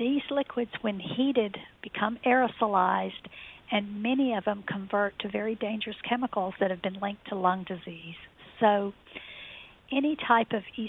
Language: English